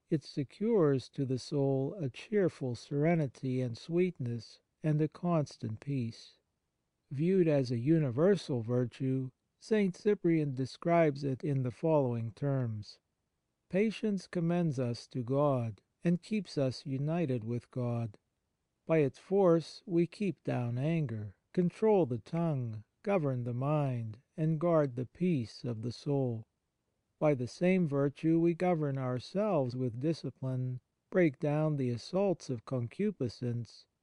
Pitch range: 125-170 Hz